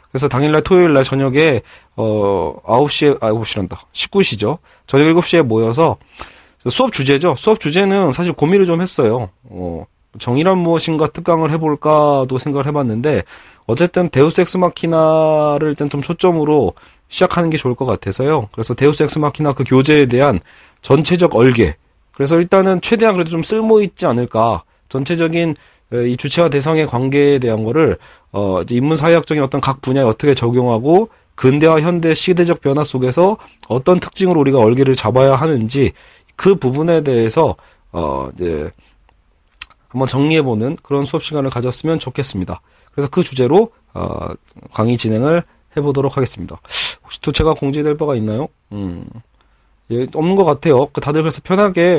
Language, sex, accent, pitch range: Korean, male, native, 125-165 Hz